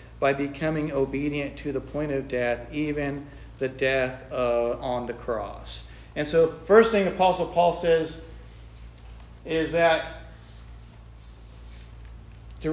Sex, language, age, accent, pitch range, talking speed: male, English, 40-59, American, 130-165 Hz, 120 wpm